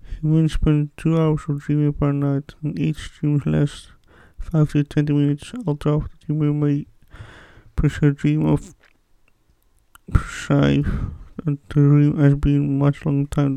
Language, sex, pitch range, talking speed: English, male, 135-150 Hz, 140 wpm